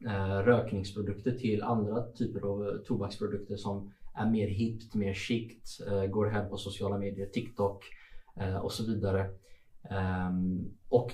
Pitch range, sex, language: 100-115 Hz, male, Swedish